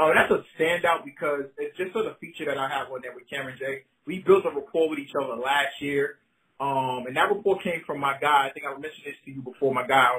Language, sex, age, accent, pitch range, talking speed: English, male, 30-49, American, 140-185 Hz, 270 wpm